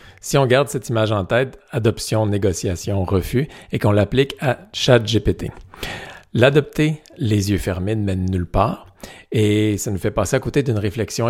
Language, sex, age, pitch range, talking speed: French, male, 50-69, 95-120 Hz, 175 wpm